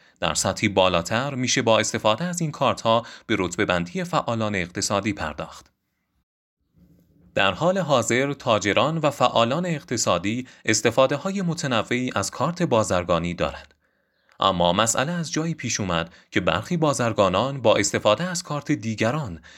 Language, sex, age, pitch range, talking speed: Persian, male, 30-49, 95-140 Hz, 135 wpm